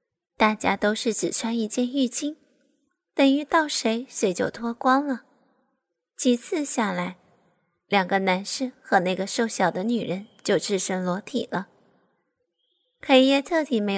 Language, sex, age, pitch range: Chinese, female, 20-39, 200-265 Hz